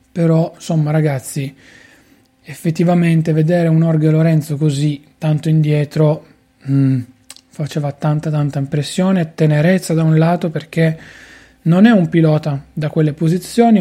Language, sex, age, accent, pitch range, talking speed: Italian, male, 30-49, native, 145-180 Hz, 115 wpm